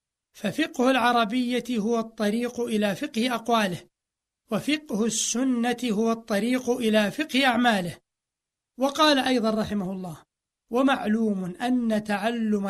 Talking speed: 100 wpm